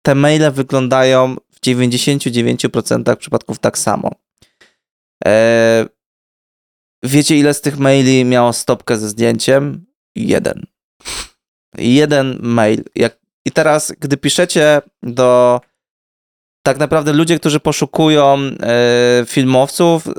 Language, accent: Polish, native